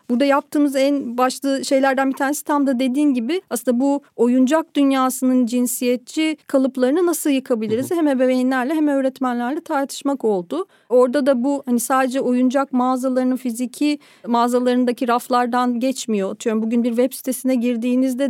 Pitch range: 235-275 Hz